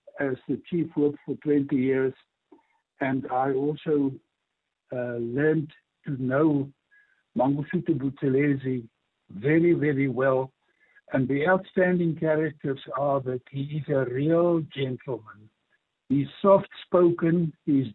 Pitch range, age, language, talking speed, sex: 135-170 Hz, 60-79, English, 110 wpm, male